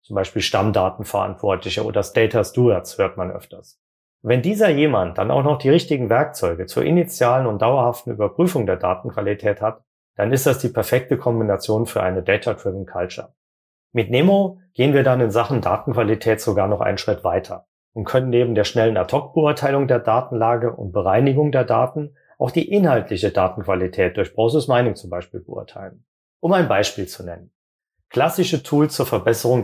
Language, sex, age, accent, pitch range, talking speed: German, male, 40-59, German, 105-135 Hz, 160 wpm